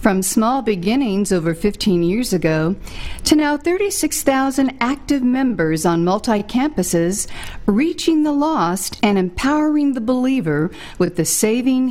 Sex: female